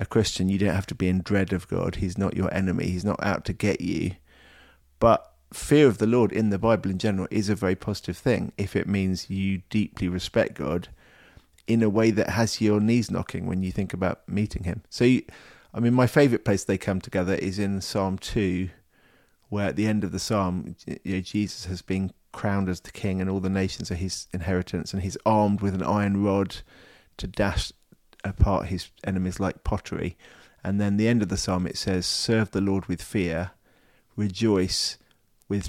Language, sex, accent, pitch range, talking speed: English, male, British, 95-110 Hz, 210 wpm